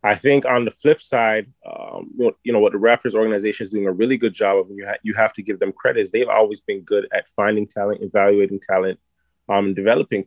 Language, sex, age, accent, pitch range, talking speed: English, male, 20-39, American, 100-130 Hz, 245 wpm